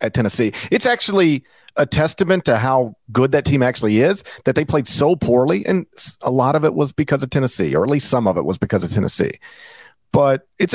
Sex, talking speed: male, 220 wpm